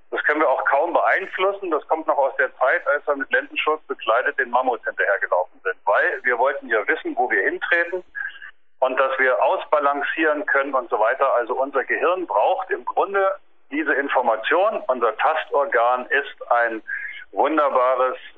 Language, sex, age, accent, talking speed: German, male, 50-69, German, 165 wpm